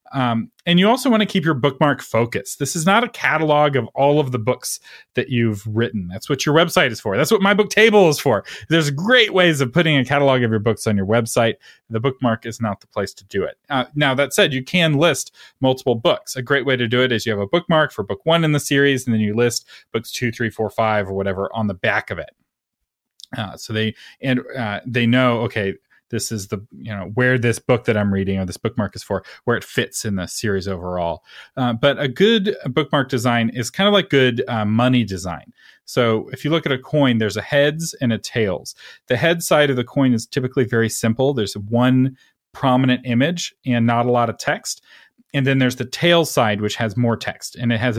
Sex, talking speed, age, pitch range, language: male, 240 wpm, 30-49, 110-145 Hz, English